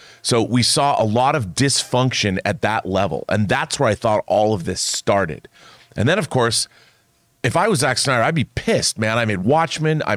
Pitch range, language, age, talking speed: 105-135 Hz, English, 40-59, 210 wpm